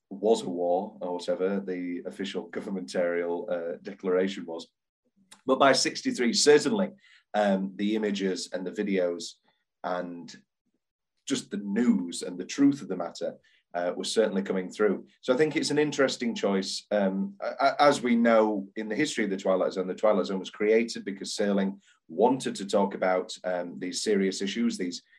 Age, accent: 30-49, British